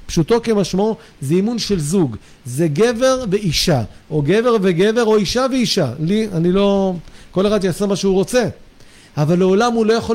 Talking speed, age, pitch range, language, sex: 170 wpm, 50-69, 185-240 Hz, Hebrew, male